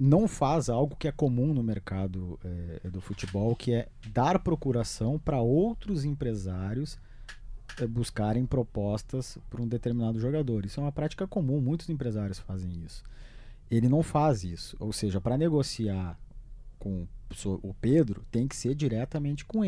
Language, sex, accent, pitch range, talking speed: Portuguese, male, Brazilian, 105-150 Hz, 145 wpm